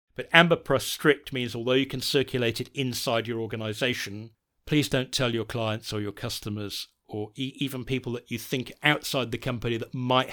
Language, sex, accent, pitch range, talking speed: English, male, British, 110-135 Hz, 180 wpm